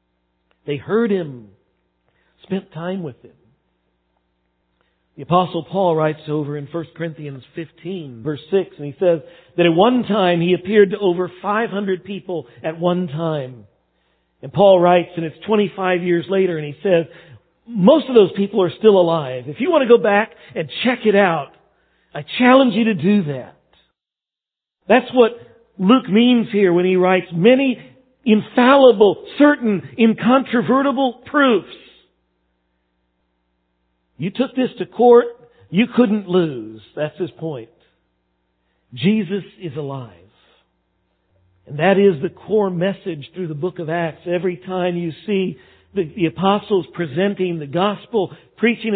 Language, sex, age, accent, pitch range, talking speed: English, male, 50-69, American, 145-205 Hz, 140 wpm